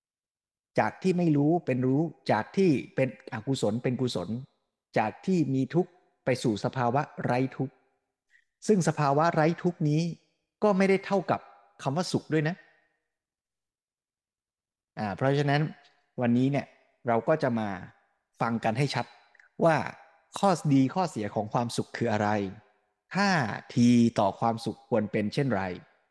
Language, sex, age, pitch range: Thai, male, 20-39, 110-155 Hz